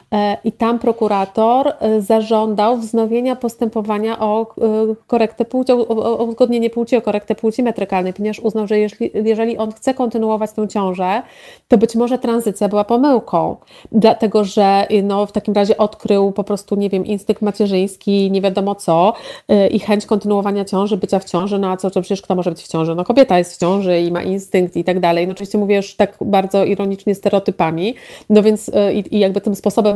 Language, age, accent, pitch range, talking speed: Polish, 30-49, native, 195-235 Hz, 180 wpm